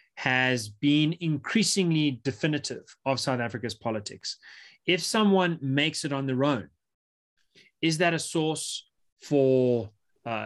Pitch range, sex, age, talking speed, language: 120-145 Hz, male, 30-49, 120 wpm, English